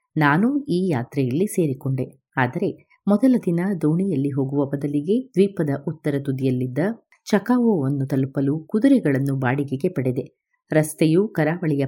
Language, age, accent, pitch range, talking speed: Kannada, 30-49, native, 135-190 Hz, 100 wpm